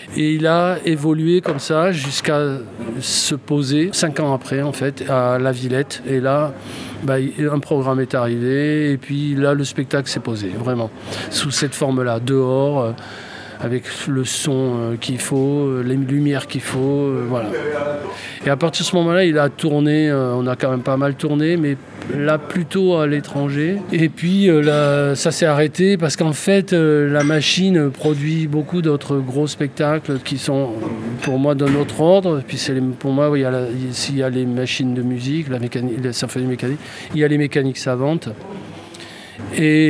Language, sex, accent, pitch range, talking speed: French, male, French, 125-150 Hz, 175 wpm